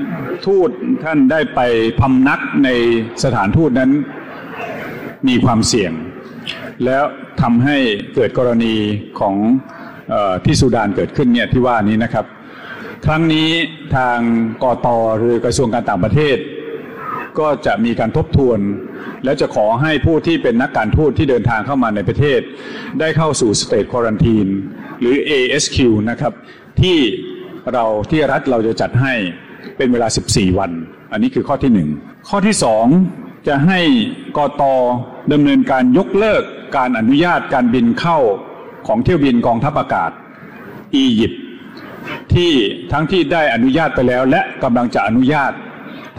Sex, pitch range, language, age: male, 115-185 Hz, Thai, 60-79